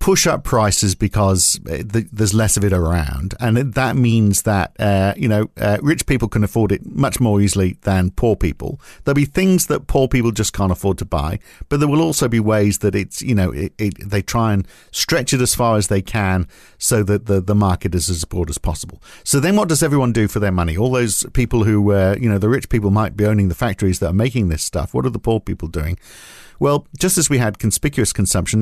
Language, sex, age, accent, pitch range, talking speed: English, male, 50-69, British, 100-120 Hz, 235 wpm